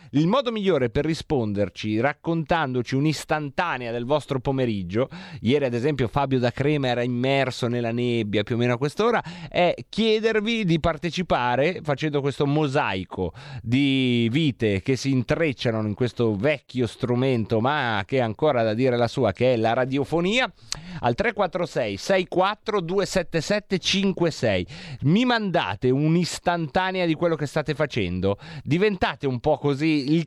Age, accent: 30-49, native